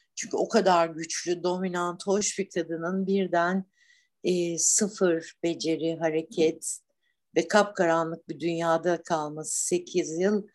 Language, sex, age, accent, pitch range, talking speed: Turkish, female, 60-79, native, 160-195 Hz, 115 wpm